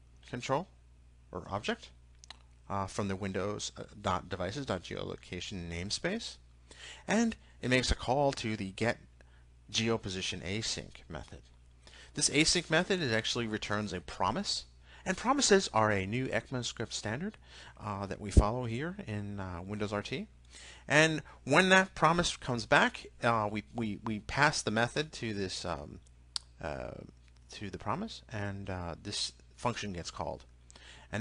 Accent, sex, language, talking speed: American, male, English, 130 wpm